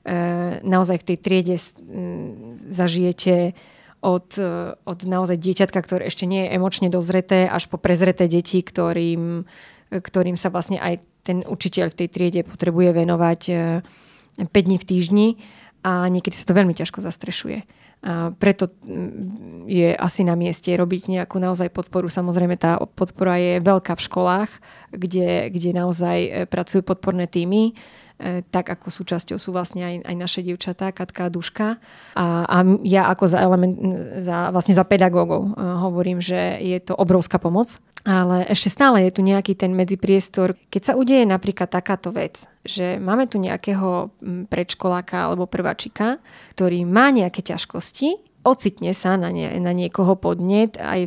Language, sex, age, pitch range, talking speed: Slovak, female, 30-49, 180-195 Hz, 145 wpm